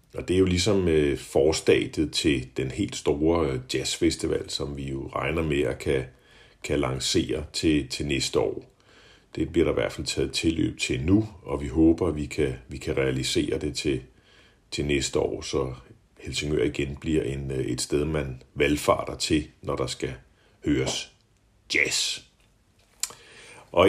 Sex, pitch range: male, 70-90 Hz